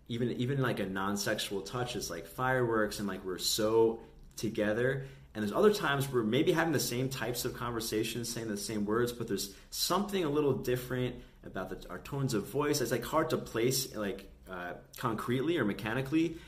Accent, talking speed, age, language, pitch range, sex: American, 190 wpm, 30-49, English, 95-120 Hz, male